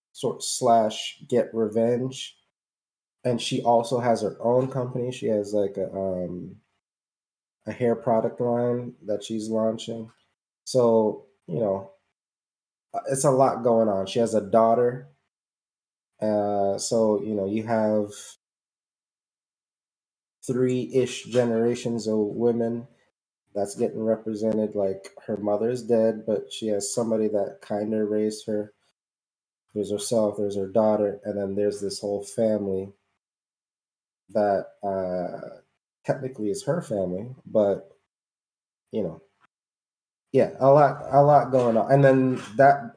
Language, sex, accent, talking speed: English, male, American, 130 wpm